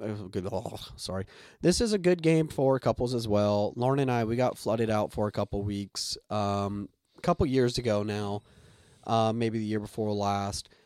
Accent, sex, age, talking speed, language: American, male, 20-39, 200 wpm, English